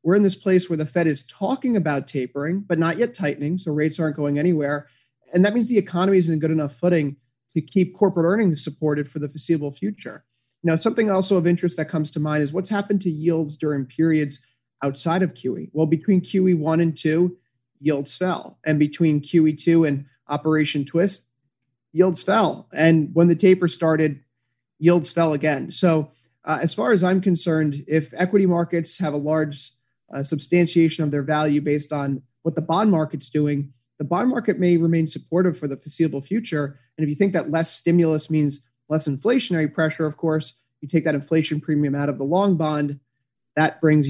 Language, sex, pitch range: English, male, 145-180 Hz